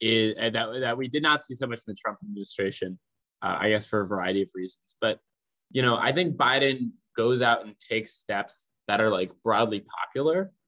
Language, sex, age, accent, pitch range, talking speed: English, male, 20-39, American, 105-135 Hz, 210 wpm